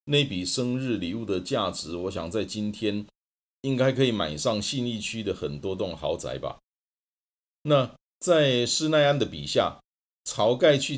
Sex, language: male, Chinese